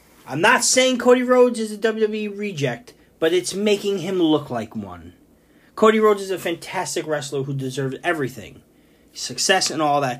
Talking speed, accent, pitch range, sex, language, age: 170 wpm, American, 140-195 Hz, male, English, 30-49